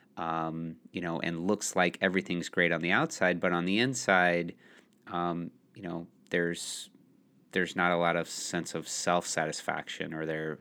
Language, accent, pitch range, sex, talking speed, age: English, American, 85-95 Hz, male, 165 wpm, 30-49